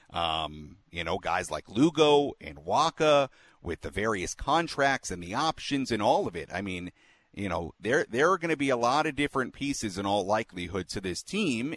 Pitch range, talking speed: 90-135 Hz, 205 wpm